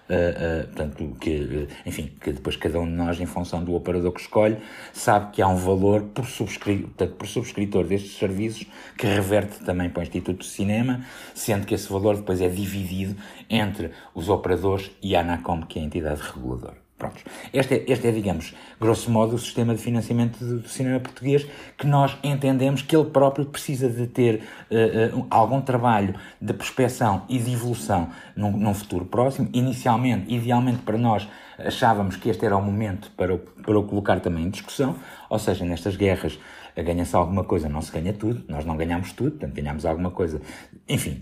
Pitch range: 95-130 Hz